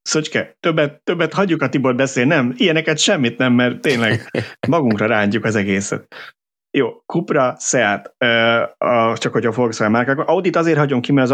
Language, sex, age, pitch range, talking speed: Hungarian, male, 30-49, 95-125 Hz, 170 wpm